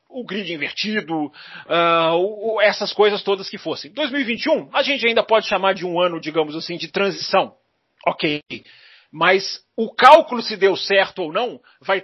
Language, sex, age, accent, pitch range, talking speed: Portuguese, male, 40-59, Brazilian, 165-270 Hz, 160 wpm